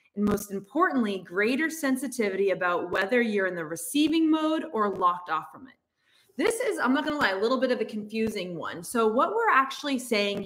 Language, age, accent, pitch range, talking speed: English, 20-39, American, 195-265 Hz, 200 wpm